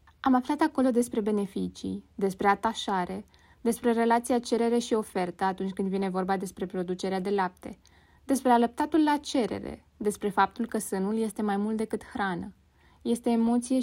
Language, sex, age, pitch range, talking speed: Romanian, female, 20-39, 190-250 Hz, 150 wpm